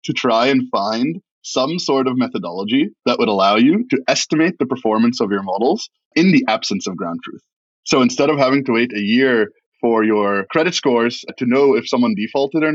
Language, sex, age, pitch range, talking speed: English, male, 20-39, 120-195 Hz, 205 wpm